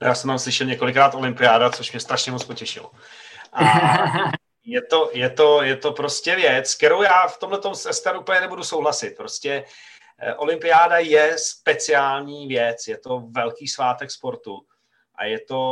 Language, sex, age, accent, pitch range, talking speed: Czech, male, 40-59, native, 120-170 Hz, 160 wpm